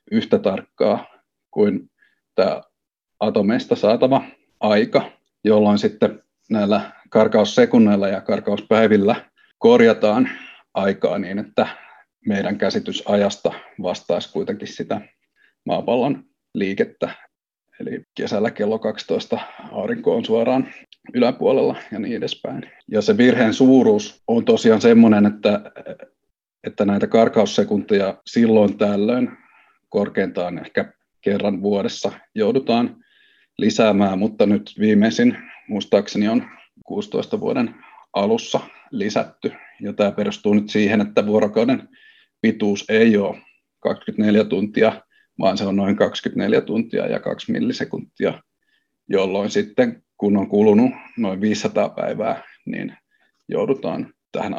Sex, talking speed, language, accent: male, 105 wpm, Finnish, native